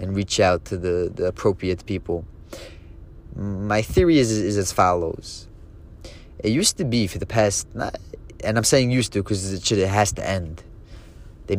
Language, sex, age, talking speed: English, male, 30-49, 180 wpm